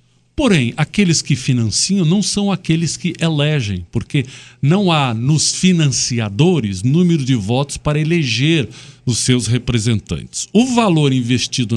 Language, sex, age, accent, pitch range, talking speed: Portuguese, male, 50-69, Brazilian, 120-175 Hz, 125 wpm